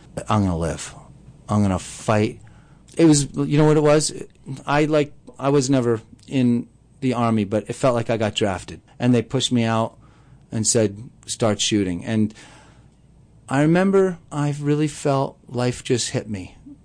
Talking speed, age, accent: 170 wpm, 40-59, American